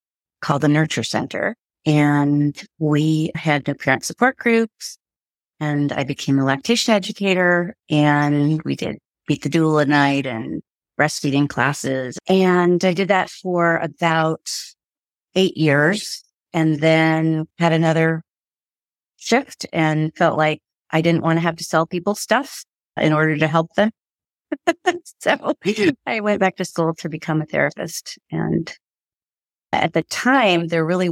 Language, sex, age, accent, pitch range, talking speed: English, female, 40-59, American, 145-175 Hz, 145 wpm